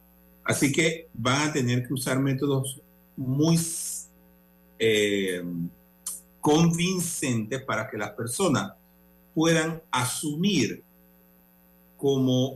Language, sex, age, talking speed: Spanish, male, 50-69, 85 wpm